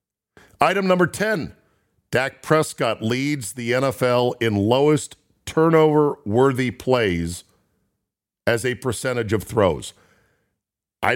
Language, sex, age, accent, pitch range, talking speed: English, male, 50-69, American, 100-130 Hz, 95 wpm